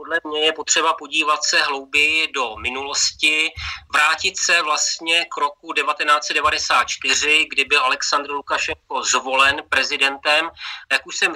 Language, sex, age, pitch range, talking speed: Slovak, male, 30-49, 145-160 Hz, 125 wpm